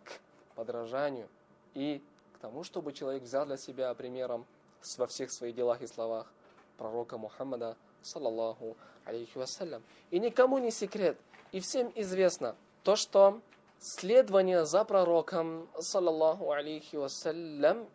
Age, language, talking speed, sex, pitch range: 20-39, Russian, 110 wpm, male, 145-220 Hz